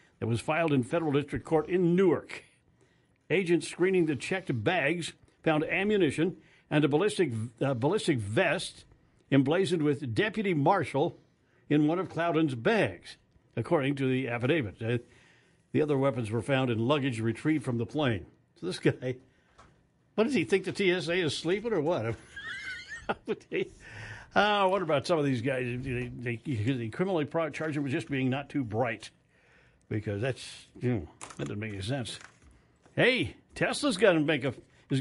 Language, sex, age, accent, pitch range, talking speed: English, male, 60-79, American, 130-170 Hz, 155 wpm